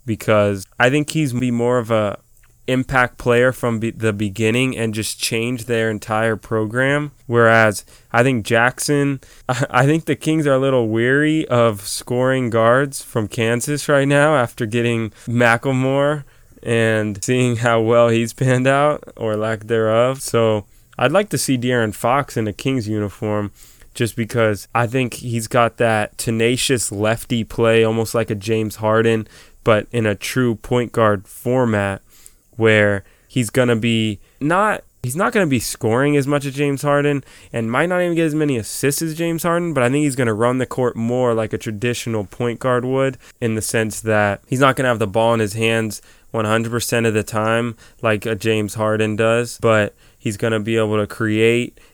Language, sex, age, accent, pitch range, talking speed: English, male, 20-39, American, 110-130 Hz, 185 wpm